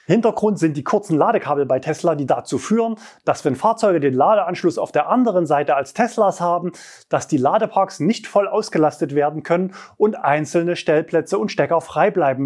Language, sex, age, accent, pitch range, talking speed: German, male, 30-49, German, 145-200 Hz, 180 wpm